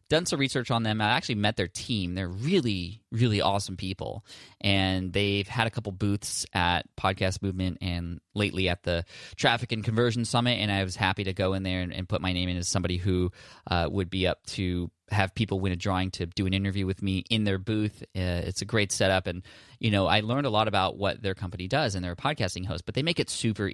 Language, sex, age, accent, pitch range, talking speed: English, male, 20-39, American, 90-110 Hz, 240 wpm